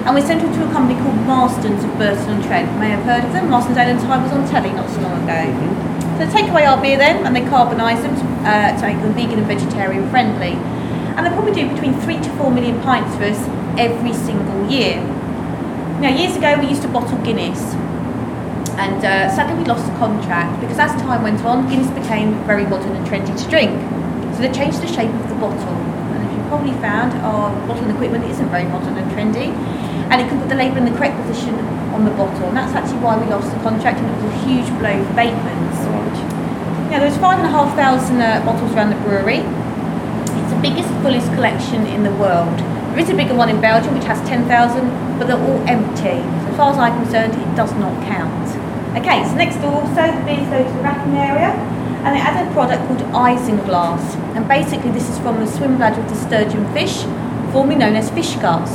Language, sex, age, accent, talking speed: English, female, 30-49, British, 225 wpm